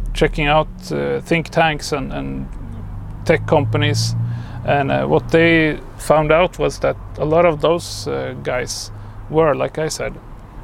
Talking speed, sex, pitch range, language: 150 wpm, male, 110-155 Hz, English